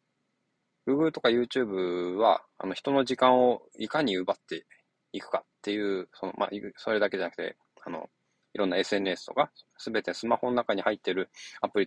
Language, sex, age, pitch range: Japanese, male, 20-39, 105-140 Hz